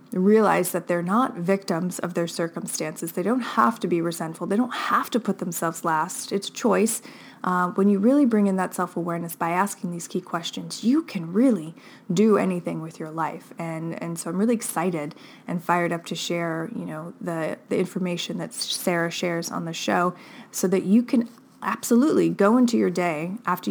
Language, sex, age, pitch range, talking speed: English, female, 20-39, 175-210 Hz, 195 wpm